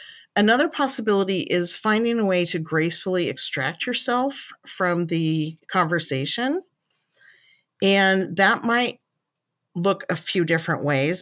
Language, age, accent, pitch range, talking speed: English, 40-59, American, 160-220 Hz, 110 wpm